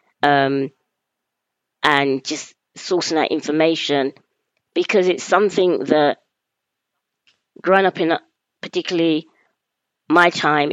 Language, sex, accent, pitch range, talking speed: English, female, British, 145-190 Hz, 95 wpm